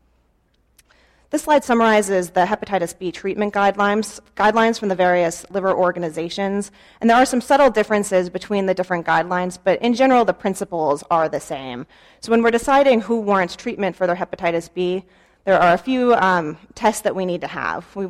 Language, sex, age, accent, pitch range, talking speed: English, female, 30-49, American, 170-205 Hz, 180 wpm